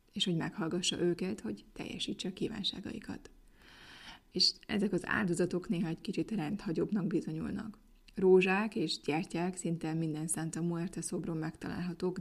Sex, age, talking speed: female, 20-39, 125 wpm